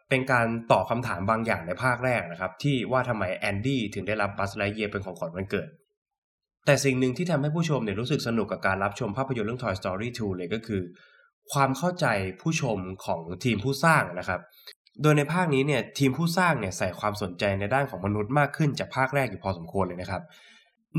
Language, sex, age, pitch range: Thai, male, 20-39, 100-140 Hz